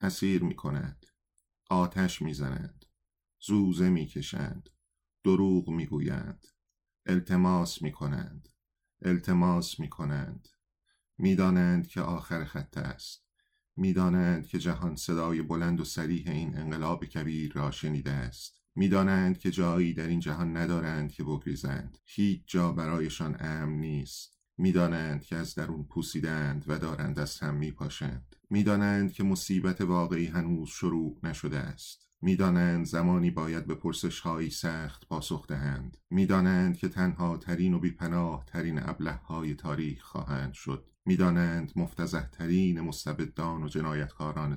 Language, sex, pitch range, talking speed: English, male, 75-90 Hz, 120 wpm